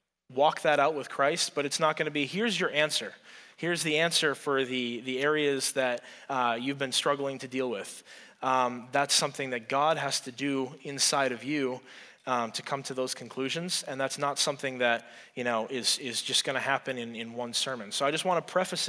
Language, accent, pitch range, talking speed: English, American, 125-155 Hz, 220 wpm